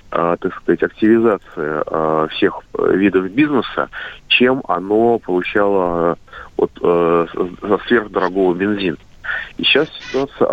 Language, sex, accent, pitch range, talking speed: Russian, male, native, 105-145 Hz, 110 wpm